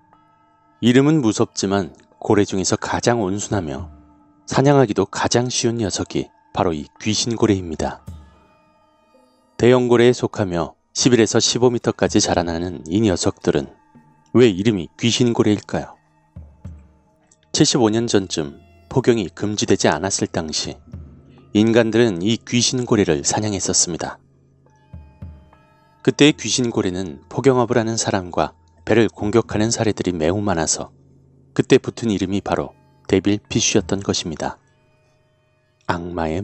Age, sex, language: 30-49, male, Korean